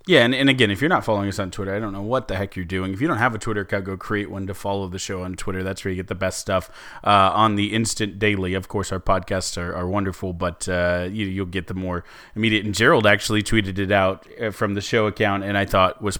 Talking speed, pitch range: 280 wpm, 95-110 Hz